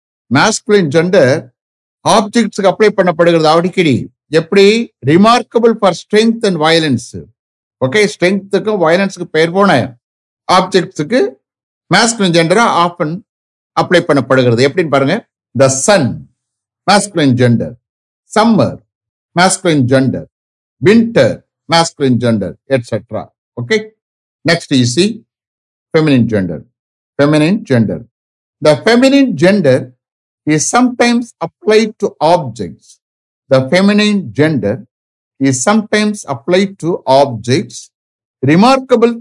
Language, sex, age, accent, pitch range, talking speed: English, male, 60-79, Indian, 130-205 Hz, 90 wpm